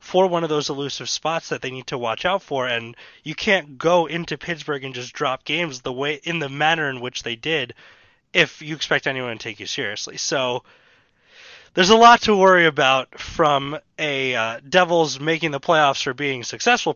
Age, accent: 20-39, American